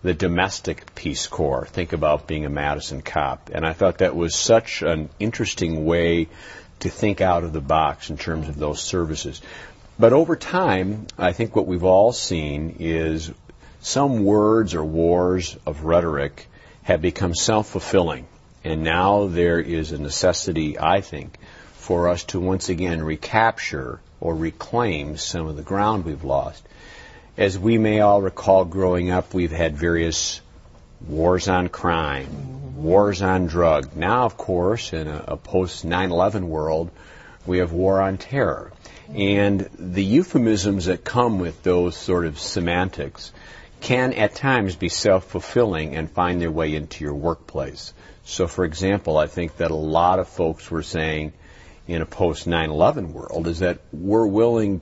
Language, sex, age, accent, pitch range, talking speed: English, male, 50-69, American, 80-95 Hz, 155 wpm